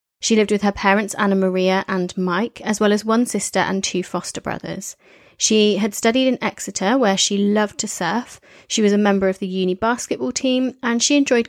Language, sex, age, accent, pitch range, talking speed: English, female, 30-49, British, 195-230 Hz, 210 wpm